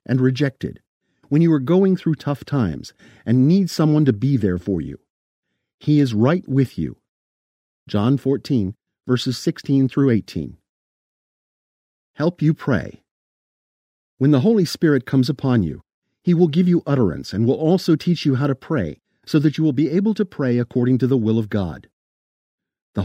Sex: male